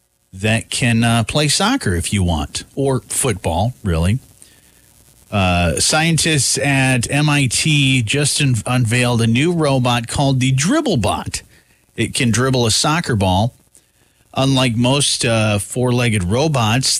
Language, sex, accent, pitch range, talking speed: English, male, American, 105-145 Hz, 125 wpm